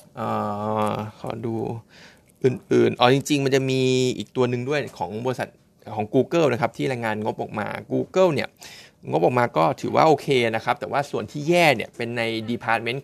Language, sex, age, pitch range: Thai, male, 20-39, 110-135 Hz